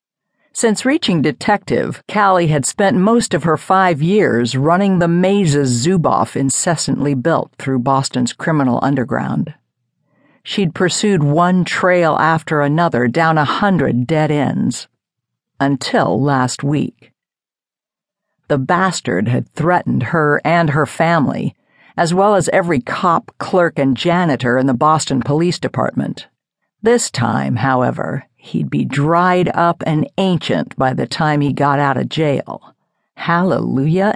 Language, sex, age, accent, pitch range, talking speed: English, female, 60-79, American, 135-185 Hz, 130 wpm